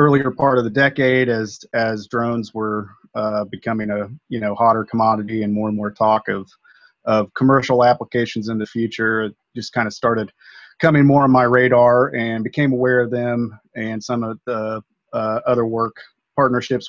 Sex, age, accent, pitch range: male, 30-49, American, 105-125 Hz